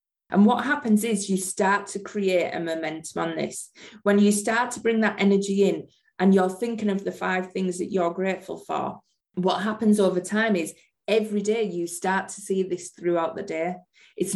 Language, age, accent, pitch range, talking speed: English, 20-39, British, 175-205 Hz, 195 wpm